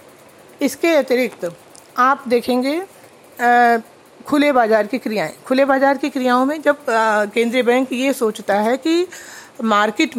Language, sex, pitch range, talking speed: Hindi, female, 230-290 Hz, 135 wpm